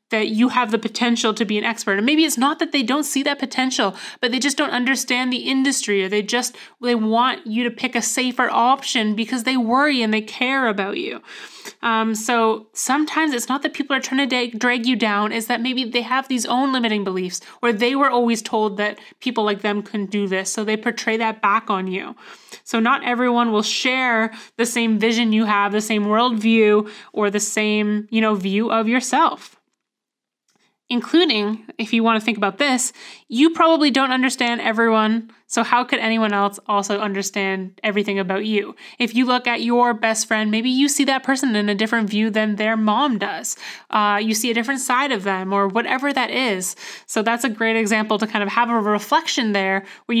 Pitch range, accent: 210-250 Hz, American